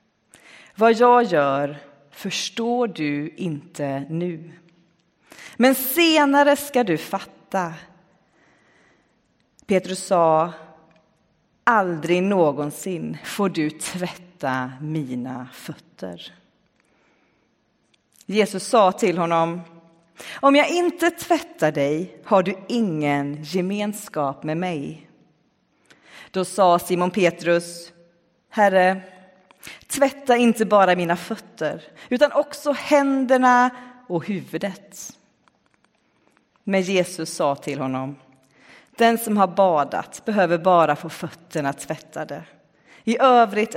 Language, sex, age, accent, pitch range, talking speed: Swedish, female, 30-49, native, 165-220 Hz, 90 wpm